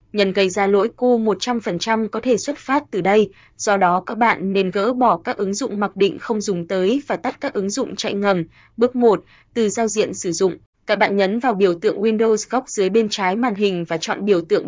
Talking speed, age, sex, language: 235 wpm, 20-39, female, Vietnamese